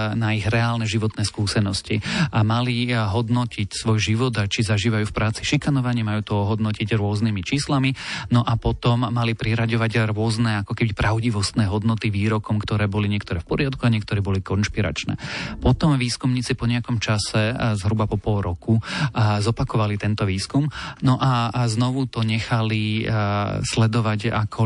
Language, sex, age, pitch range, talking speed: Slovak, male, 40-59, 105-120 Hz, 145 wpm